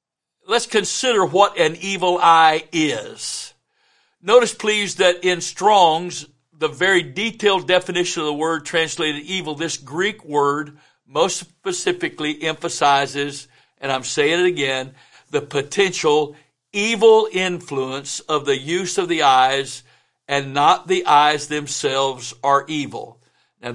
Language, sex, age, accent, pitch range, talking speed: English, male, 60-79, American, 145-205 Hz, 125 wpm